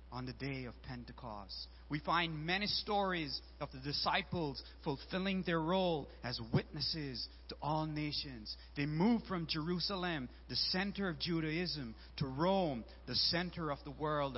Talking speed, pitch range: 145 wpm, 110-185 Hz